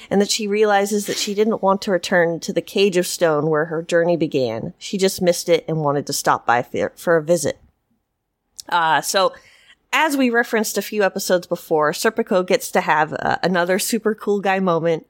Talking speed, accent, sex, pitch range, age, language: 200 wpm, American, female, 165-205 Hz, 30-49, English